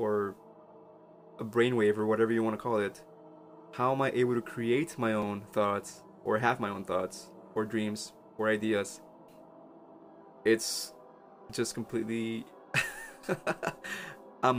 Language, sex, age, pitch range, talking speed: English, male, 20-39, 105-120 Hz, 130 wpm